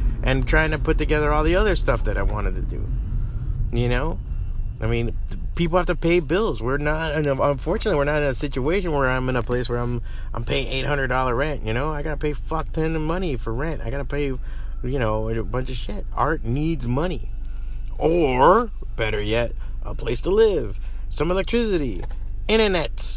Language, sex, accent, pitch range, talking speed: English, male, American, 100-135 Hz, 195 wpm